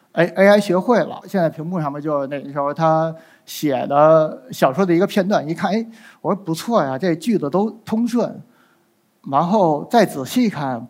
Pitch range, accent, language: 155-220 Hz, native, Chinese